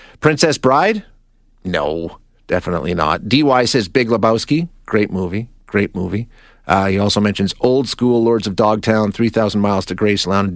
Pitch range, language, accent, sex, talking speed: 100-130 Hz, English, American, male, 150 wpm